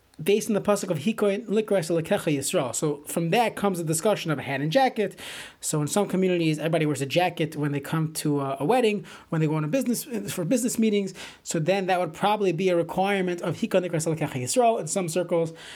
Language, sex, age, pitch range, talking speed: English, male, 30-49, 160-200 Hz, 220 wpm